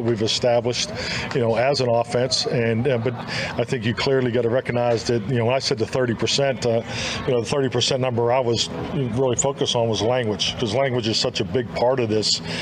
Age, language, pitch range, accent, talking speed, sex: 40-59, English, 115-130 Hz, American, 235 wpm, male